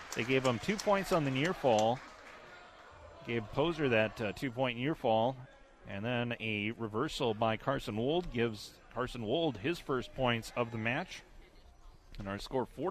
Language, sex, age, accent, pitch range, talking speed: English, male, 30-49, American, 115-145 Hz, 165 wpm